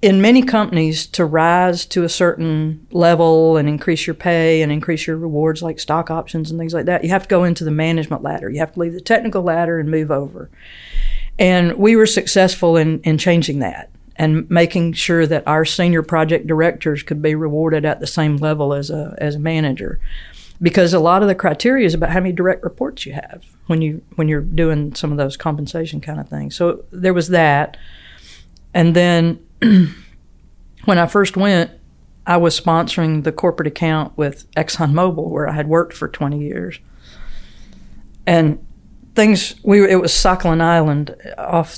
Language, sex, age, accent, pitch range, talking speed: English, female, 50-69, American, 150-175 Hz, 185 wpm